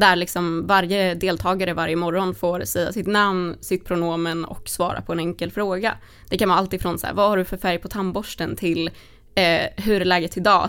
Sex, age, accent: female, 20-39, native